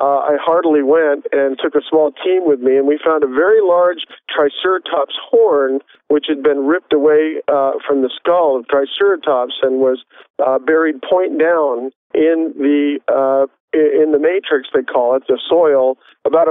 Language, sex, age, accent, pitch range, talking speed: English, male, 50-69, American, 140-200 Hz, 175 wpm